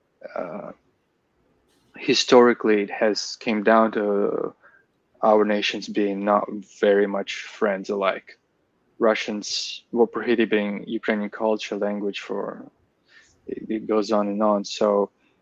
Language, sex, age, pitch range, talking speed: English, male, 20-39, 100-115 Hz, 115 wpm